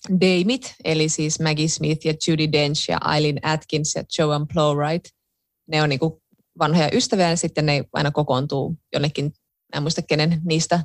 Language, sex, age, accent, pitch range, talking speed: Finnish, female, 20-39, native, 155-215 Hz, 165 wpm